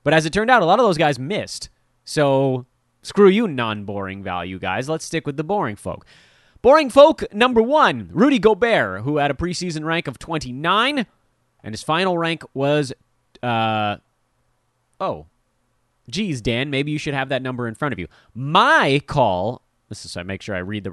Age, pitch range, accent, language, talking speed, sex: 30-49, 110-150 Hz, American, English, 185 wpm, male